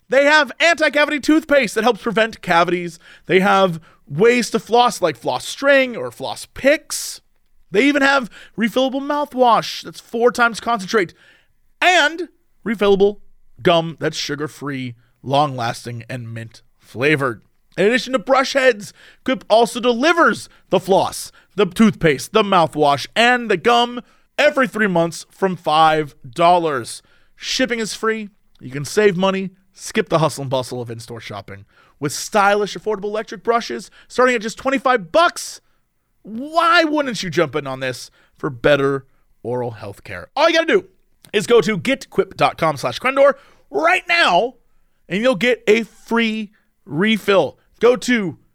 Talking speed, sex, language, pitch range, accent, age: 140 wpm, male, English, 160-255 Hz, American, 30-49